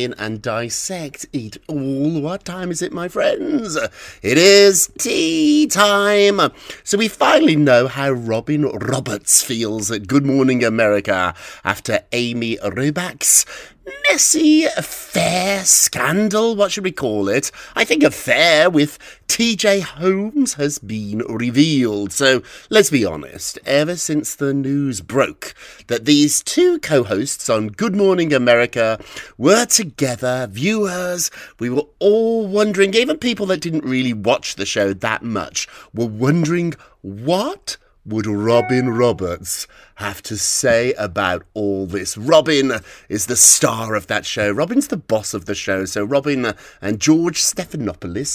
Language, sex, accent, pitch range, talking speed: English, male, British, 110-180 Hz, 135 wpm